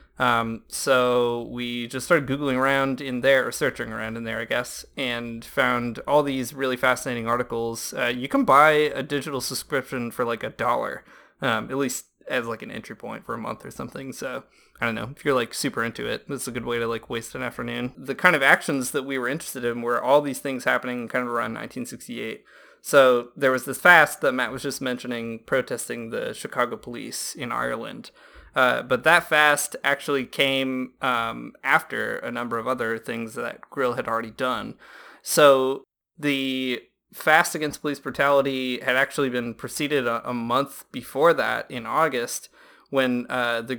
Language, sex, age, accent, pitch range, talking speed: English, male, 20-39, American, 120-135 Hz, 190 wpm